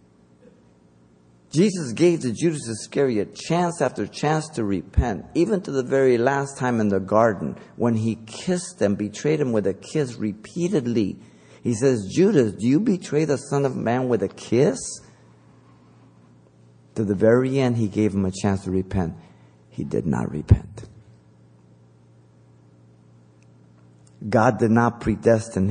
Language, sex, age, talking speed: English, male, 50-69, 140 wpm